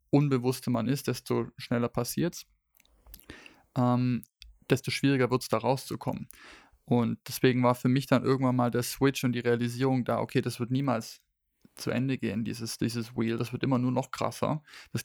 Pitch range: 120-130 Hz